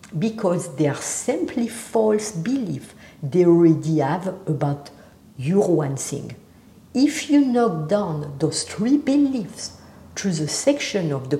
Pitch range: 150-220 Hz